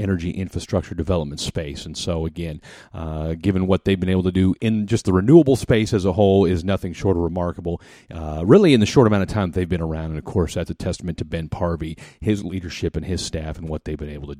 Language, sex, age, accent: English, male, 40-59, American